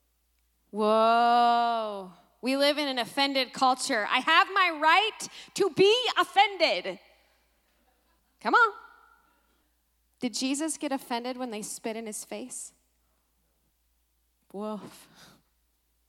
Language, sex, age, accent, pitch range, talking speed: English, female, 20-39, American, 220-300 Hz, 100 wpm